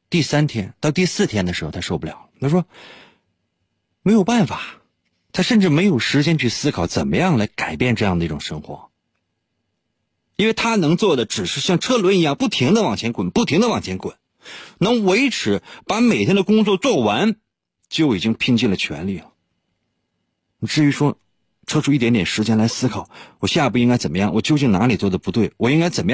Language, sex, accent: Chinese, male, native